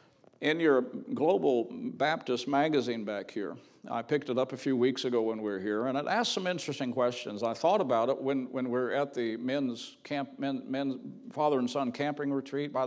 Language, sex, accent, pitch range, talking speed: English, male, American, 120-145 Hz, 210 wpm